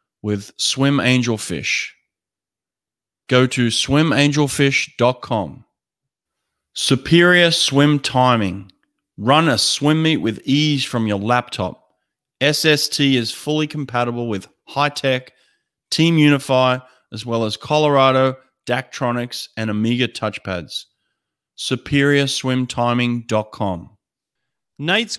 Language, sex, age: English, male, 30-49